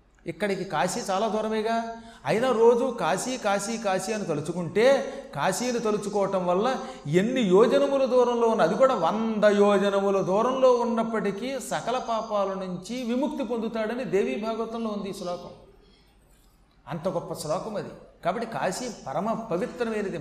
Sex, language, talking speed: male, Telugu, 125 wpm